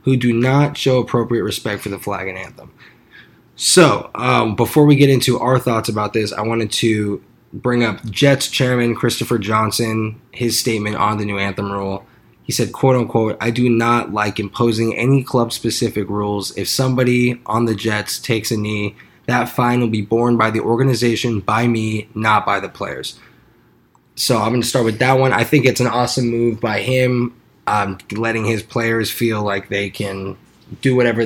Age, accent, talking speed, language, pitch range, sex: 20-39, American, 185 wpm, English, 110-130 Hz, male